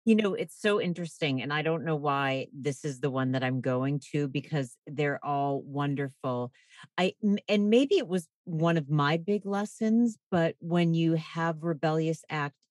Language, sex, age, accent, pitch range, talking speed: English, female, 40-59, American, 145-185 Hz, 180 wpm